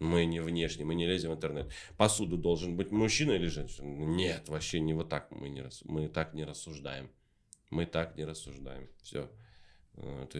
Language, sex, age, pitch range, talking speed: Russian, male, 30-49, 80-100 Hz, 165 wpm